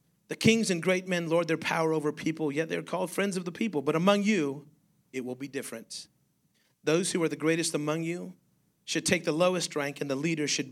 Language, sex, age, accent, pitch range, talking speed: English, male, 30-49, American, 145-175 Hz, 225 wpm